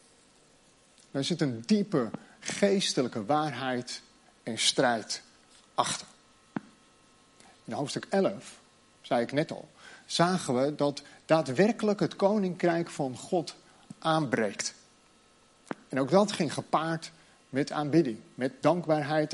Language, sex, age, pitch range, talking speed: Dutch, male, 40-59, 150-205 Hz, 105 wpm